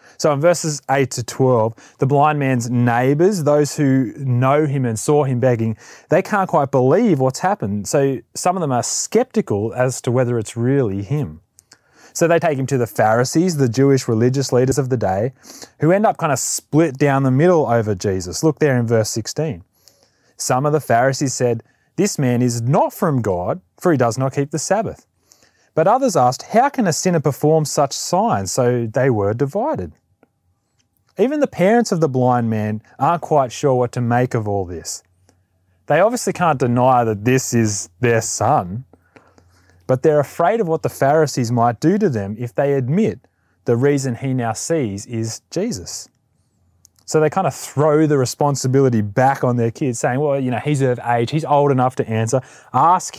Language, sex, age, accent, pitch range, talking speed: English, male, 30-49, Australian, 115-150 Hz, 190 wpm